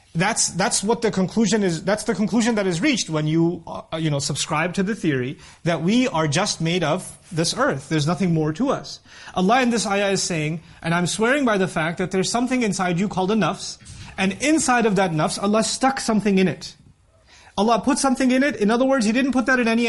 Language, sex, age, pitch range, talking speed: English, male, 30-49, 165-225 Hz, 230 wpm